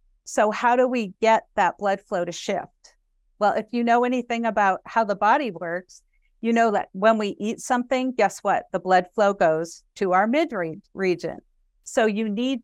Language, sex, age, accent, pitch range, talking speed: English, female, 50-69, American, 185-225 Hz, 190 wpm